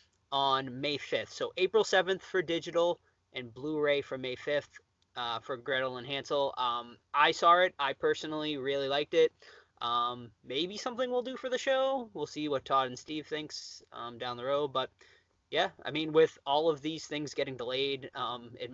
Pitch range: 125-190 Hz